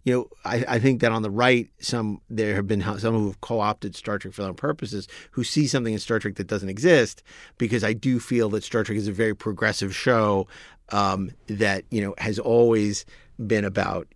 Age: 40-59